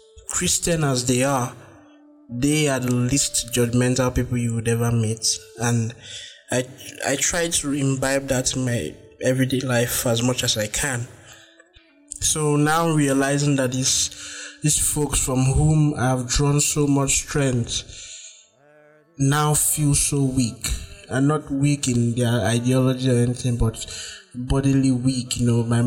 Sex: male